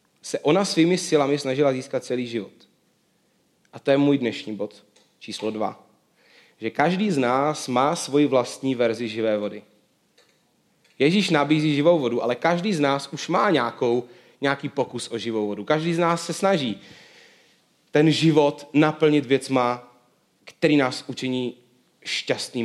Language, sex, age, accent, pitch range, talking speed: Czech, male, 30-49, native, 130-165 Hz, 145 wpm